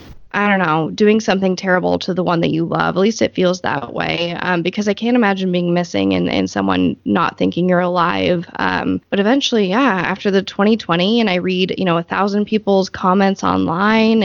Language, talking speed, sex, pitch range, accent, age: English, 200 wpm, female, 175-210 Hz, American, 20-39